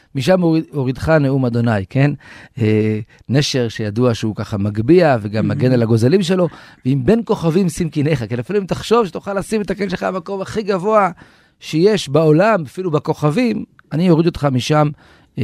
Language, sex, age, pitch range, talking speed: Hebrew, male, 40-59, 115-160 Hz, 165 wpm